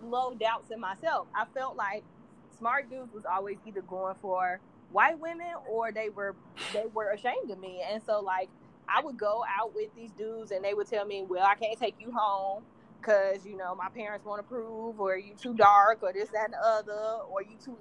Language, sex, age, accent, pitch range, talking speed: English, female, 20-39, American, 200-245 Hz, 220 wpm